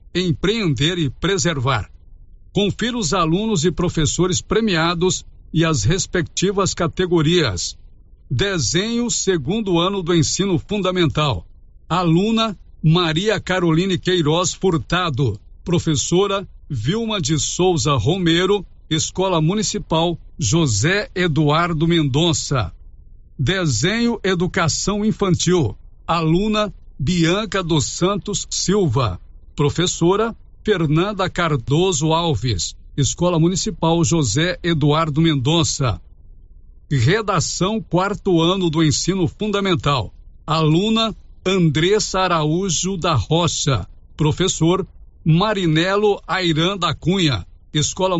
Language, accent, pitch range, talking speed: Portuguese, Brazilian, 145-185 Hz, 85 wpm